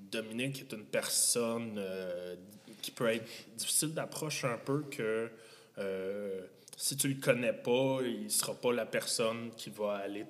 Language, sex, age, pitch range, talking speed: French, male, 20-39, 95-130 Hz, 170 wpm